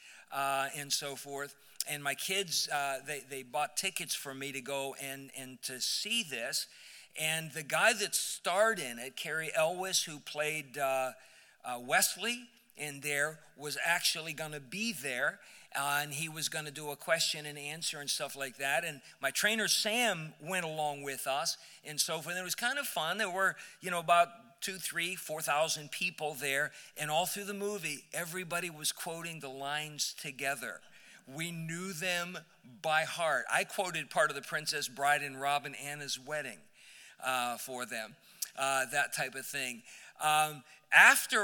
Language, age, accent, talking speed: English, 50-69, American, 180 wpm